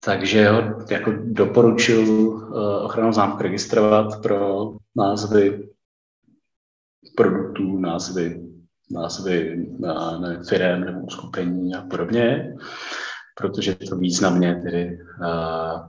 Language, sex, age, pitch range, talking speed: Czech, male, 40-59, 90-110 Hz, 90 wpm